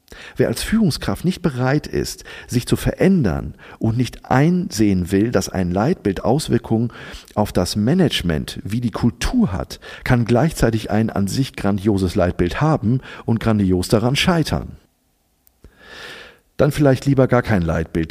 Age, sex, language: 50-69, male, German